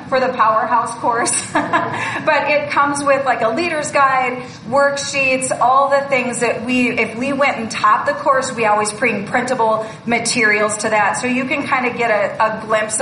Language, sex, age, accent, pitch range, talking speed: English, female, 30-49, American, 220-270 Hz, 185 wpm